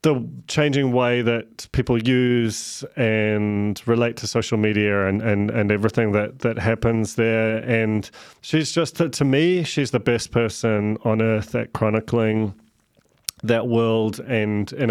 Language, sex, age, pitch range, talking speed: English, male, 30-49, 110-125 Hz, 145 wpm